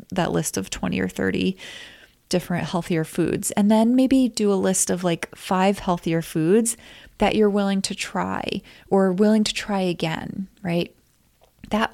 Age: 20-39